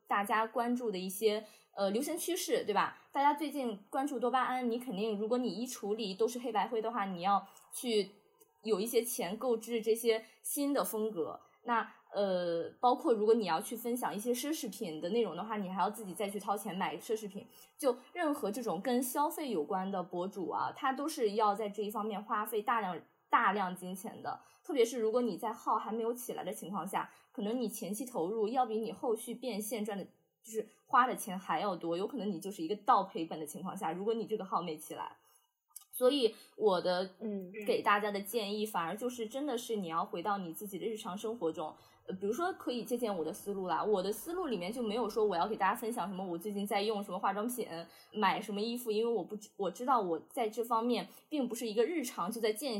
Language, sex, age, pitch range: Chinese, female, 20-39, 200-245 Hz